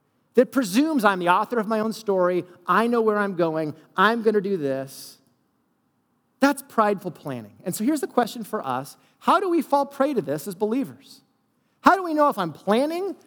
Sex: male